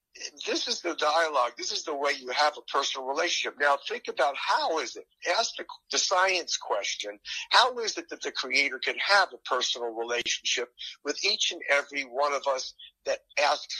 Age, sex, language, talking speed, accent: 50-69, male, English, 190 wpm, American